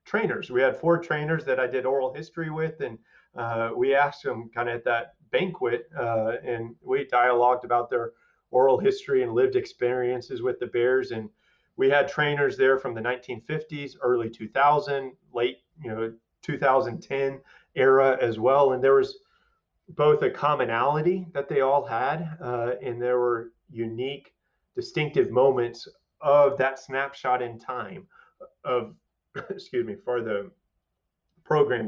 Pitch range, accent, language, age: 115-150 Hz, American, English, 30-49